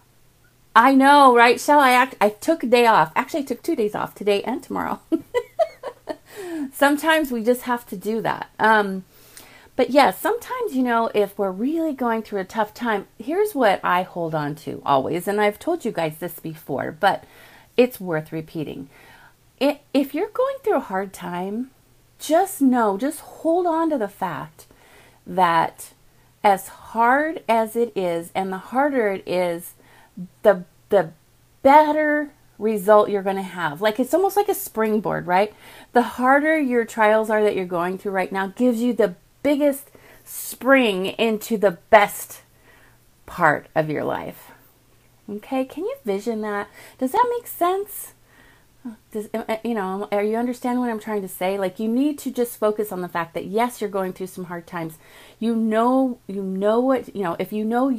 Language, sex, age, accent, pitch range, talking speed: English, female, 30-49, American, 190-265 Hz, 175 wpm